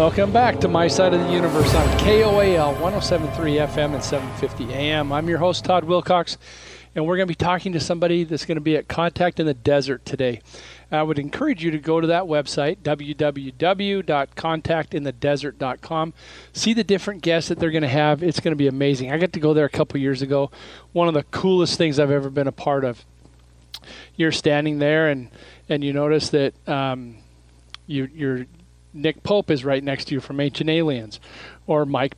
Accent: American